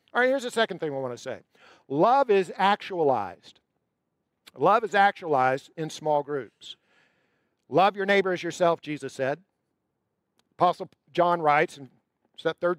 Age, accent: 50-69, American